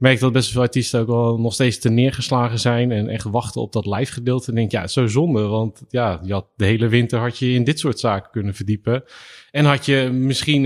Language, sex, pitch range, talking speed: Dutch, male, 105-130 Hz, 235 wpm